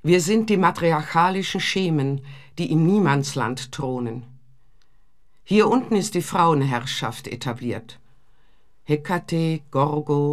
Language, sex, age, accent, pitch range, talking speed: German, female, 50-69, German, 135-180 Hz, 100 wpm